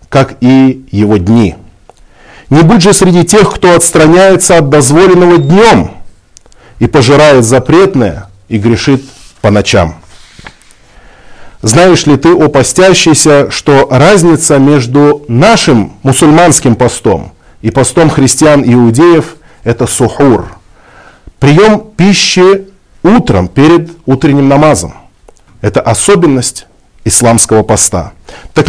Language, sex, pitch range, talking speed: Russian, male, 110-160 Hz, 105 wpm